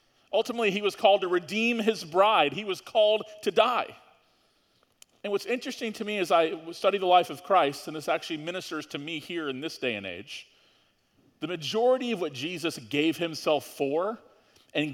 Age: 40-59